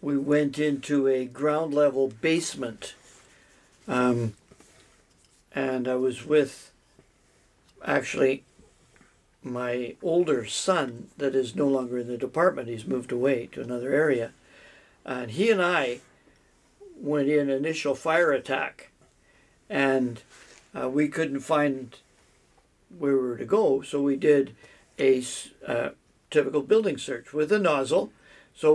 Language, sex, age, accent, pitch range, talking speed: English, male, 60-79, American, 135-160 Hz, 125 wpm